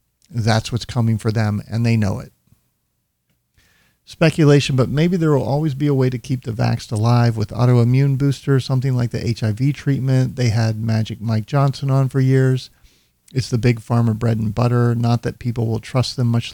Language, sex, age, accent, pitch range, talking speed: English, male, 50-69, American, 110-130 Hz, 190 wpm